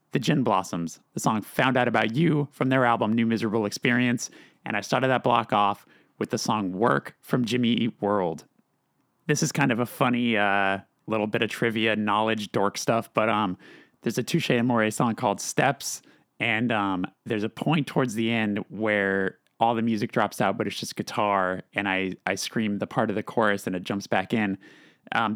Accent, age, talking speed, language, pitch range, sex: American, 30-49, 200 wpm, English, 100-120 Hz, male